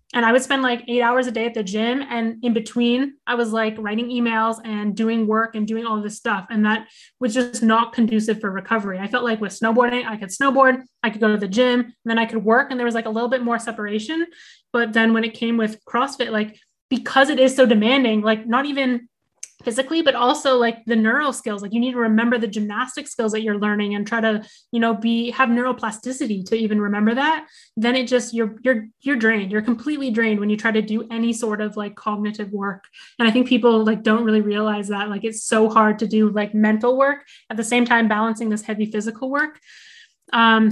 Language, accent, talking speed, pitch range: English, American, 235 wpm, 220-245 Hz